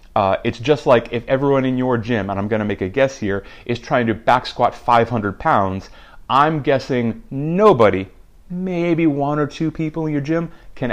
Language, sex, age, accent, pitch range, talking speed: English, male, 30-49, American, 105-135 Hz, 200 wpm